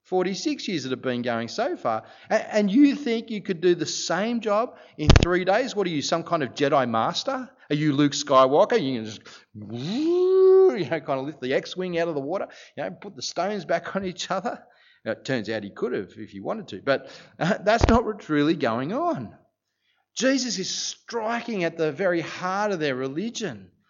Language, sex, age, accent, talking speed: English, male, 30-49, Australian, 215 wpm